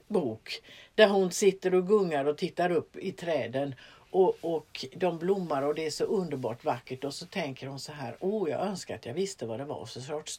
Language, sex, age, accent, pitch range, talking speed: Swedish, female, 60-79, native, 145-205 Hz, 225 wpm